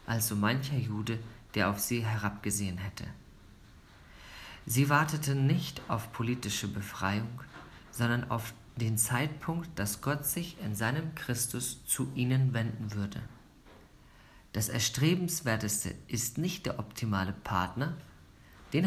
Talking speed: 115 wpm